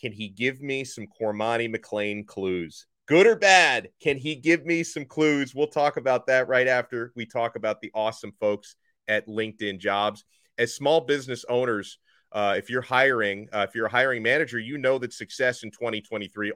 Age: 30-49